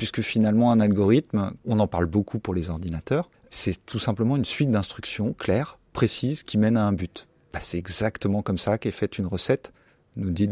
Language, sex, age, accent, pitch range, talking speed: French, male, 30-49, French, 105-145 Hz, 200 wpm